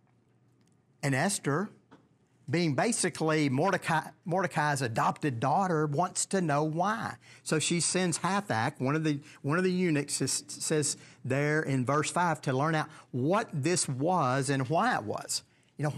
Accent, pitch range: American, 130-170 Hz